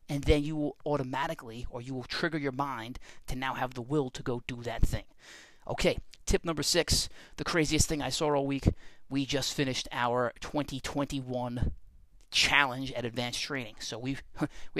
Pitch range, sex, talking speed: 130-160 Hz, male, 180 wpm